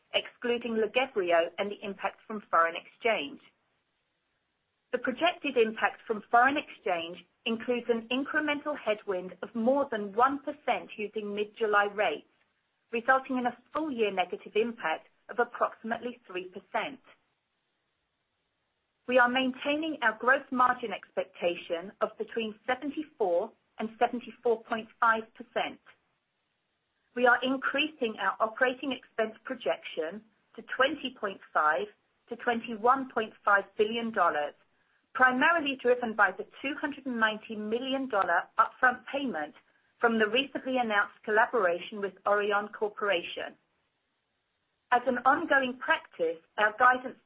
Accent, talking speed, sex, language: British, 115 wpm, female, English